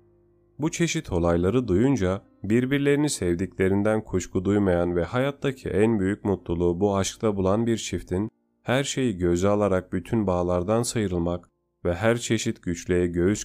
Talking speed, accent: 135 wpm, native